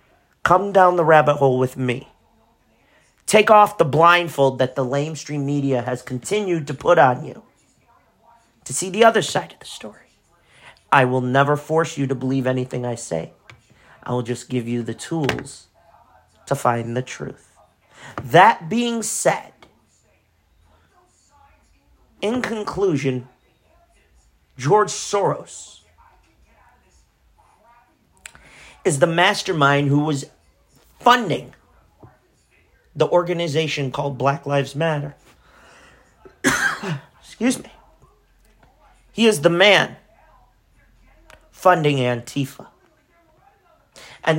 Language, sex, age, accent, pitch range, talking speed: English, male, 40-59, American, 130-175 Hz, 105 wpm